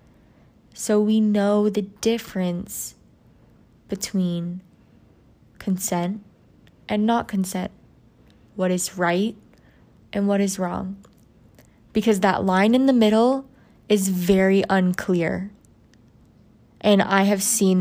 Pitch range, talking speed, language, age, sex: 180-210 Hz, 100 wpm, English, 20-39, female